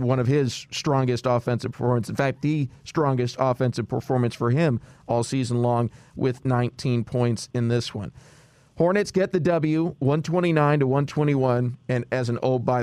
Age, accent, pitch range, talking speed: 40-59, American, 125-145 Hz, 165 wpm